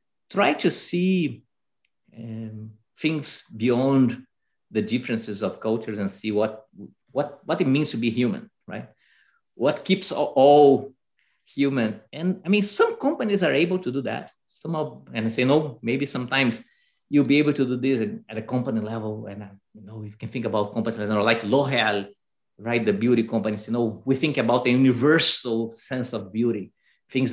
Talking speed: 185 wpm